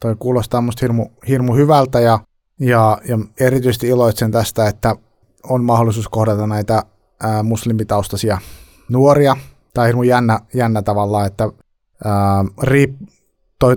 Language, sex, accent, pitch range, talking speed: Finnish, male, native, 105-125 Hz, 130 wpm